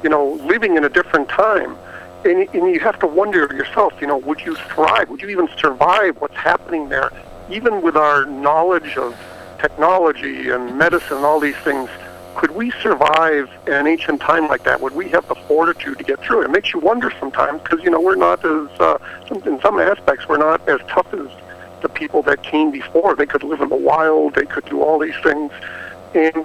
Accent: American